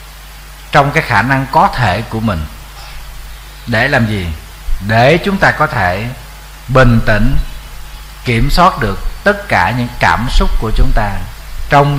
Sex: male